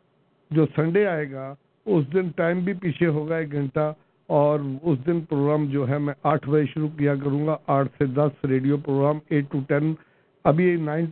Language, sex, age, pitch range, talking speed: English, male, 50-69, 130-160 Hz, 175 wpm